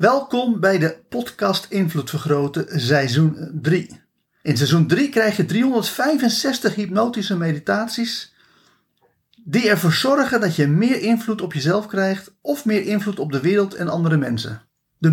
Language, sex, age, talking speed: Dutch, male, 40-59, 145 wpm